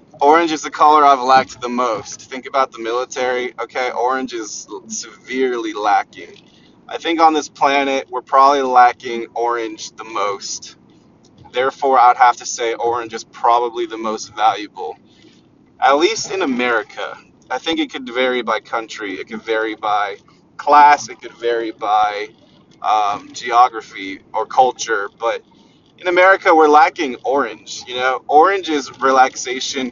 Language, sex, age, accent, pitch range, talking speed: English, male, 20-39, American, 115-145 Hz, 150 wpm